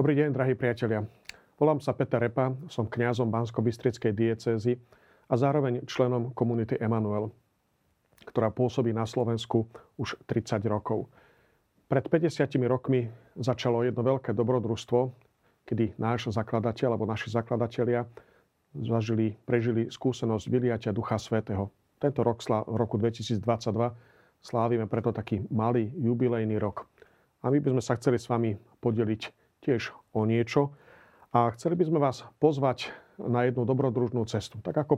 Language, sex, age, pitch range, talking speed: Slovak, male, 40-59, 115-125 Hz, 135 wpm